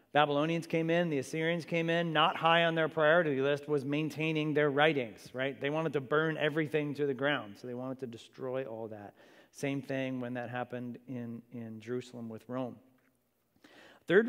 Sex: male